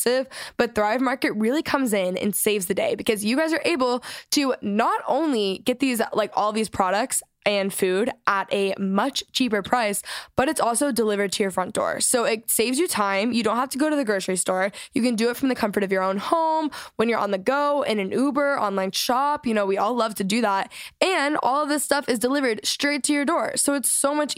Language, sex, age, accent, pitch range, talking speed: English, female, 10-29, American, 205-260 Hz, 240 wpm